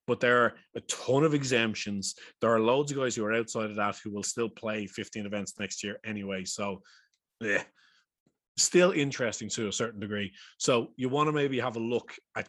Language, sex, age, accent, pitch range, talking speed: English, male, 20-39, Irish, 105-130 Hz, 205 wpm